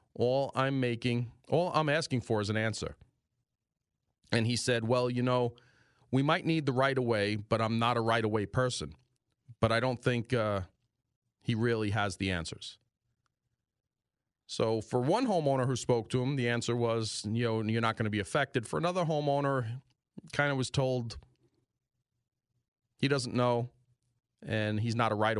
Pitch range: 110-130 Hz